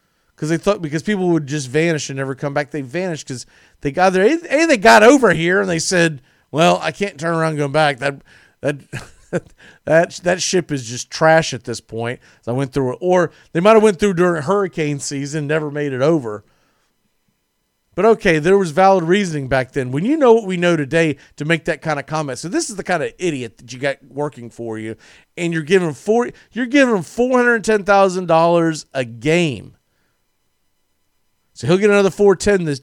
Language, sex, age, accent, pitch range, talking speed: English, male, 40-59, American, 130-185 Hz, 210 wpm